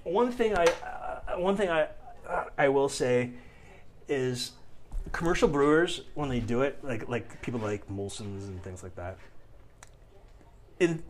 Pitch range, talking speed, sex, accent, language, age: 100-130 Hz, 150 wpm, male, American, English, 30-49